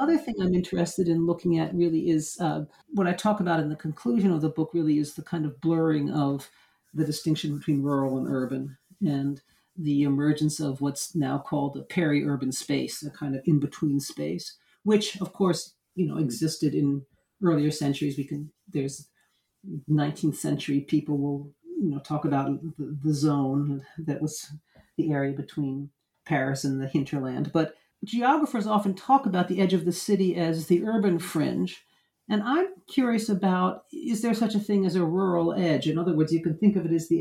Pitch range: 150-195 Hz